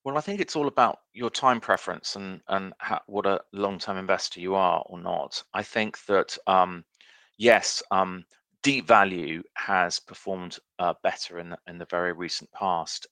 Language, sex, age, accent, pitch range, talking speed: English, male, 30-49, British, 90-105 Hz, 180 wpm